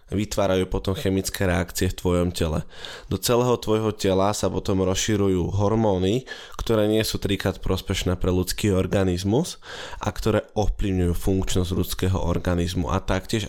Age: 20-39